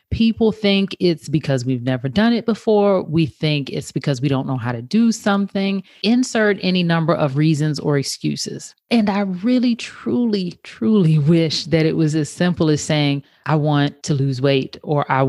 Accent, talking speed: American, 185 wpm